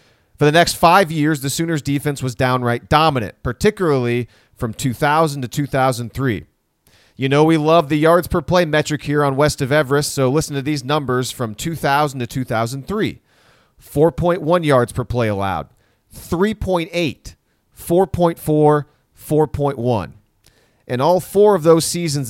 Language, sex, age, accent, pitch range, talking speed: English, male, 40-59, American, 120-165 Hz, 145 wpm